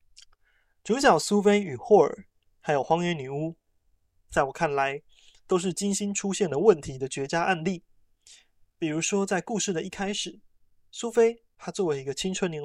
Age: 20-39